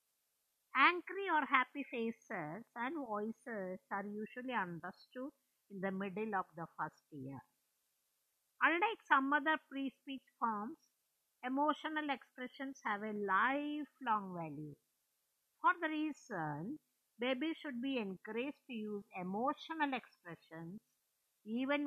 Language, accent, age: English, Indian, 50-69